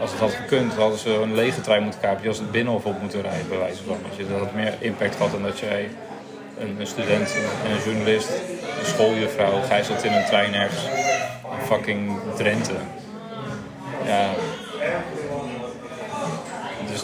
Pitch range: 105-125 Hz